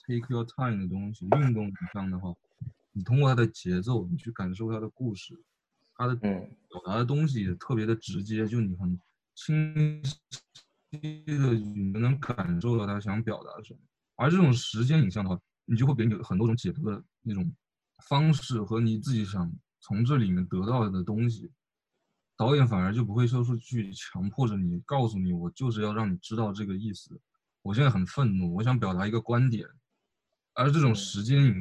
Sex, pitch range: male, 100-125 Hz